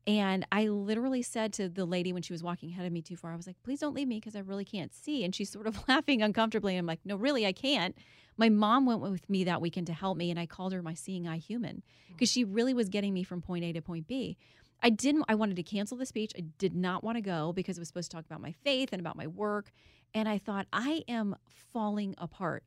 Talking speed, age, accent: 280 wpm, 30-49, American